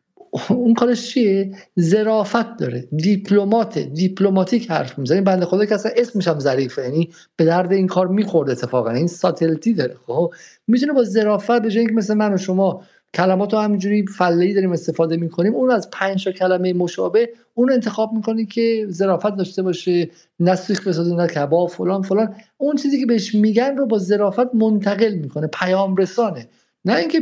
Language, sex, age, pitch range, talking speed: Persian, male, 50-69, 170-210 Hz, 160 wpm